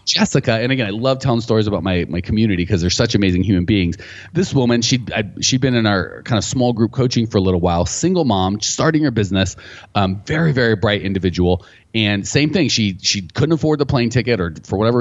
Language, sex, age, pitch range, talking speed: English, male, 30-49, 100-130 Hz, 225 wpm